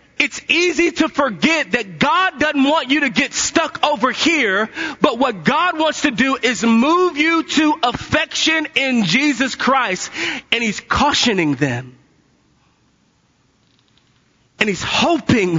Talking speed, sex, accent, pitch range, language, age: 135 wpm, male, American, 215-290 Hz, English, 30-49